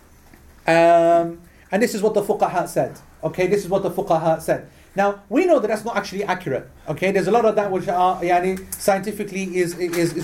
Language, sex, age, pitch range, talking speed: English, male, 30-49, 185-230 Hz, 210 wpm